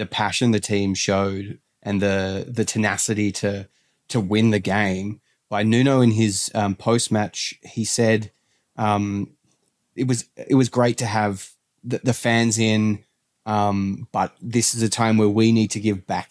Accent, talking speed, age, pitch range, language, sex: Australian, 175 wpm, 20-39, 100-120 Hz, English, male